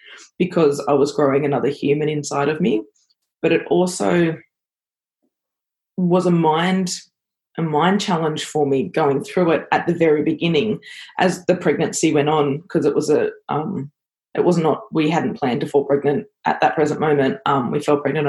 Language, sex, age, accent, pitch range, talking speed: English, female, 20-39, Australian, 150-175 Hz, 175 wpm